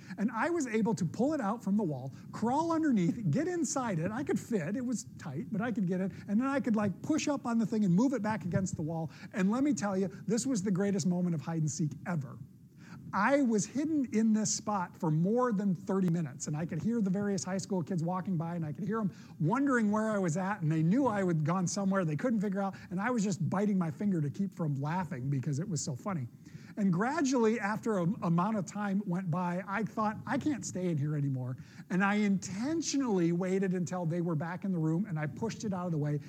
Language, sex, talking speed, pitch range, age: English, male, 250 wpm, 160-215 Hz, 50-69